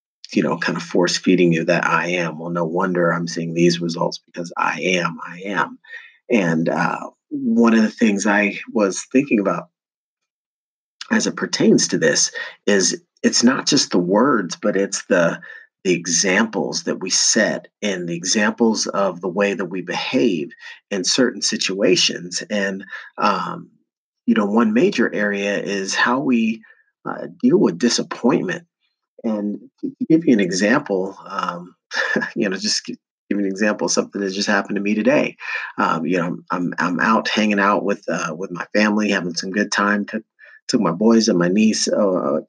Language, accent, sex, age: English, American, male, 40-59